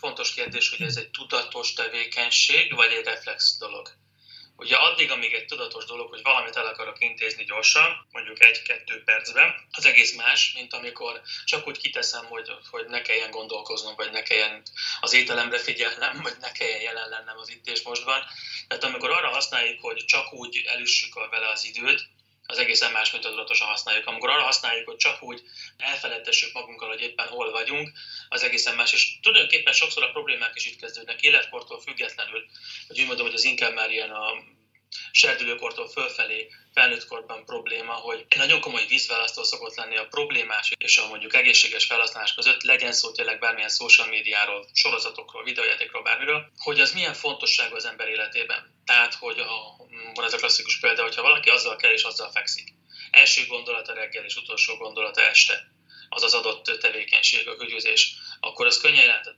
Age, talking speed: 20-39, 170 wpm